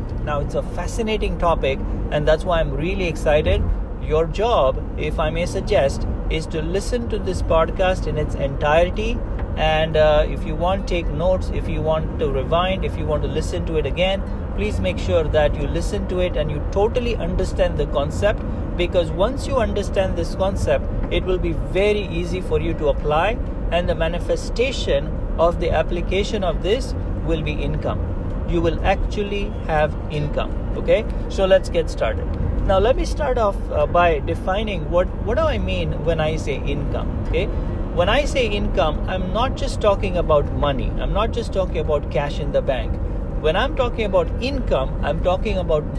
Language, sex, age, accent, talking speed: English, male, 50-69, Indian, 185 wpm